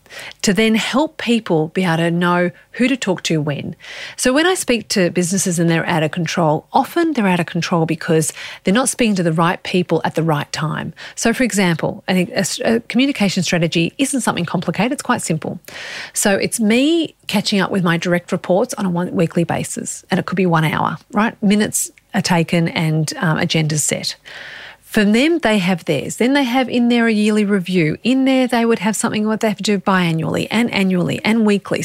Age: 40-59